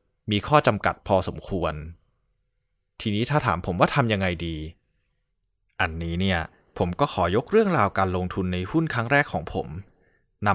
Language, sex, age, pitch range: Thai, male, 20-39, 90-115 Hz